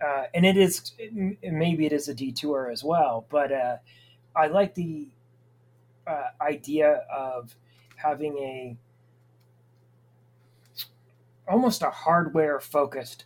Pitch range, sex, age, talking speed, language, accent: 125-175 Hz, male, 30-49, 120 wpm, English, American